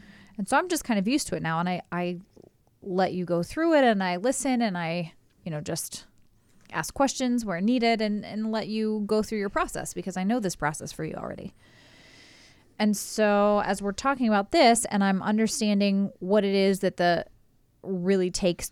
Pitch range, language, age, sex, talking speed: 170-200 Hz, English, 20-39, female, 200 wpm